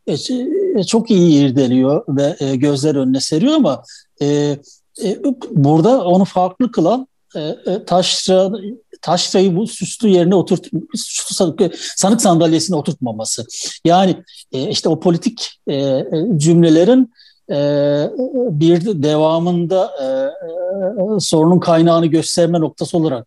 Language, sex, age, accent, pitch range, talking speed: Turkish, male, 60-79, native, 135-185 Hz, 90 wpm